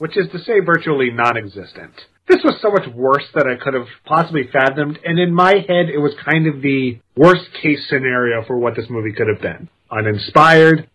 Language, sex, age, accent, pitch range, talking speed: English, male, 30-49, American, 130-170 Hz, 195 wpm